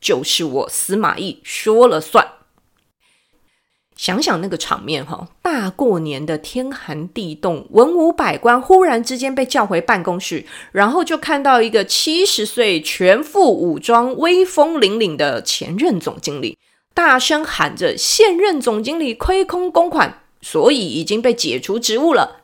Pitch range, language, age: 180-305 Hz, Chinese, 30-49